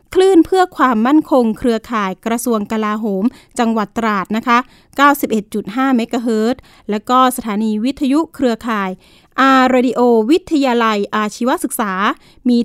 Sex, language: female, Thai